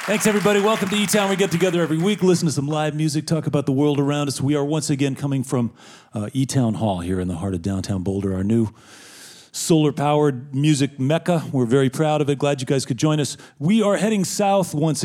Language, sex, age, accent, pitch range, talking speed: English, male, 40-59, American, 110-155 Hz, 245 wpm